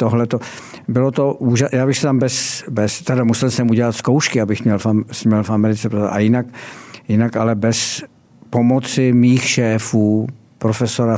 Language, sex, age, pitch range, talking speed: Czech, male, 60-79, 100-120 Hz, 140 wpm